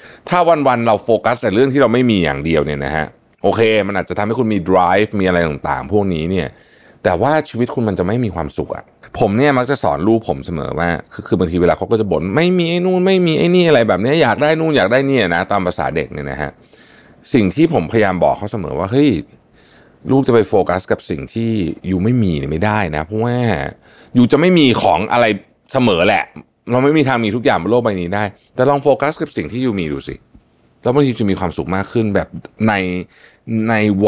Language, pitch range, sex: Thai, 85-120 Hz, male